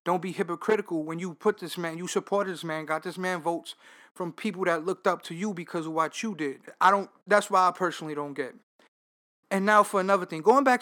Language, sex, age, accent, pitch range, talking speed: English, male, 20-39, American, 170-250 Hz, 240 wpm